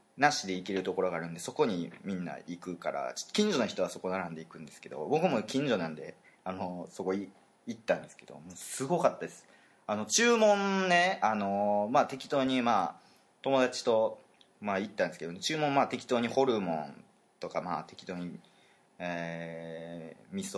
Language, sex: Japanese, male